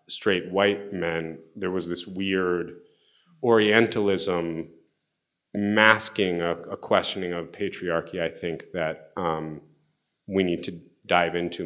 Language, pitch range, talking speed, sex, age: English, 85-100 Hz, 120 wpm, male, 30-49